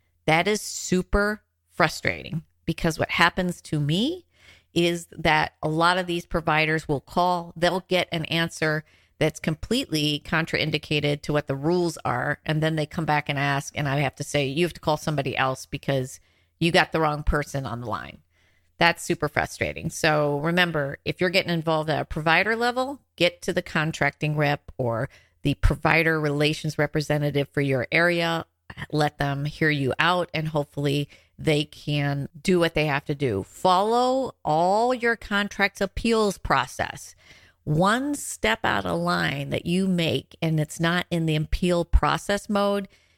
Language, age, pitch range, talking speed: English, 40-59, 140-170 Hz, 165 wpm